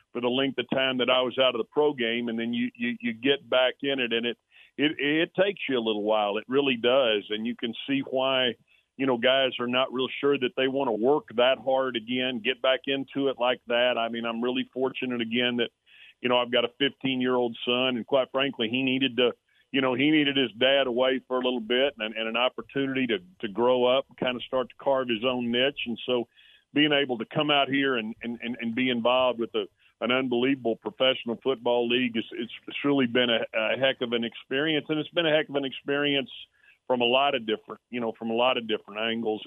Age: 40-59